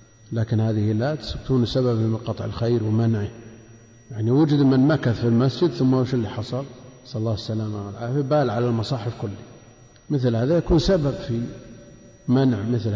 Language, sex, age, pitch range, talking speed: Arabic, male, 50-69, 115-125 Hz, 155 wpm